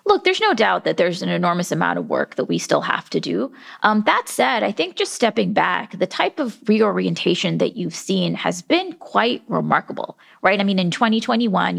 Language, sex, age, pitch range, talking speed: English, female, 30-49, 185-250 Hz, 210 wpm